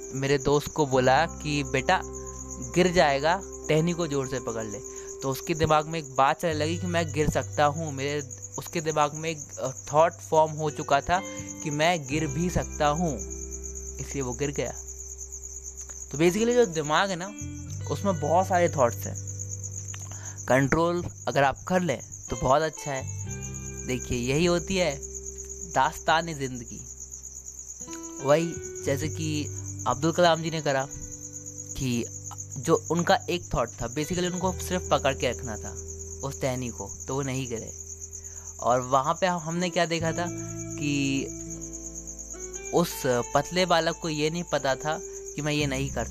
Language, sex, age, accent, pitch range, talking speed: Hindi, male, 20-39, native, 95-165 Hz, 160 wpm